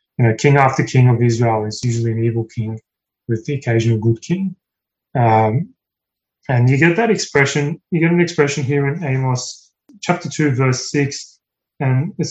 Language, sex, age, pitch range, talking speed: English, male, 20-39, 125-155 Hz, 175 wpm